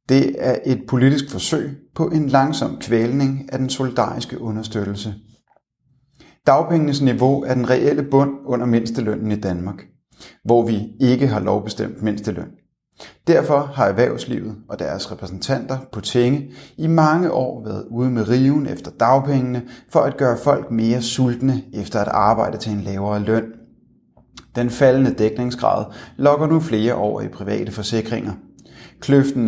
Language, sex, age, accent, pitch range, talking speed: Danish, male, 30-49, native, 110-135 Hz, 145 wpm